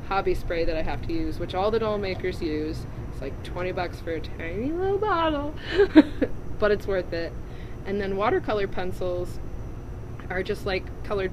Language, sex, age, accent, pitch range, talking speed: English, female, 20-39, American, 115-190 Hz, 180 wpm